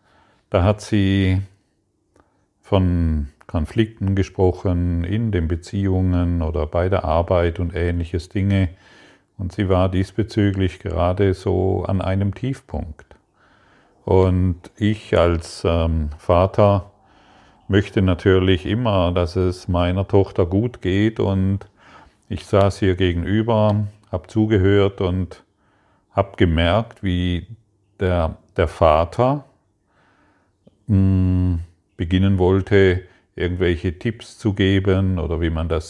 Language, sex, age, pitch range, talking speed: German, male, 50-69, 90-100 Hz, 105 wpm